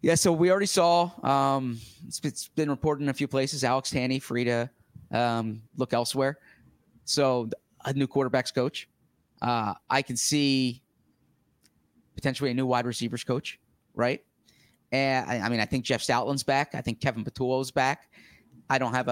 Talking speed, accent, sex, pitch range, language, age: 170 wpm, American, male, 120-135 Hz, English, 20-39